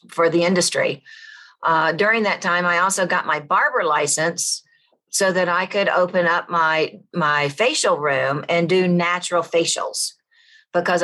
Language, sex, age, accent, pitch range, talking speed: English, female, 50-69, American, 170-220 Hz, 150 wpm